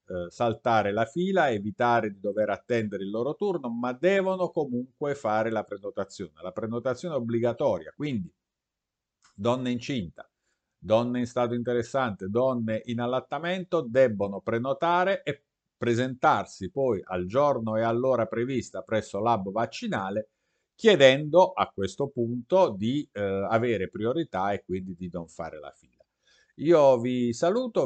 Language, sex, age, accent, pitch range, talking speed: Italian, male, 50-69, native, 115-160 Hz, 130 wpm